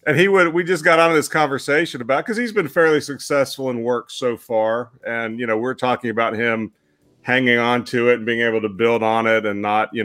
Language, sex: English, male